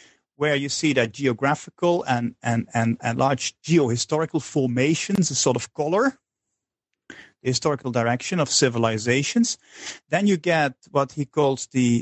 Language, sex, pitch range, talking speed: English, male, 135-185 Hz, 135 wpm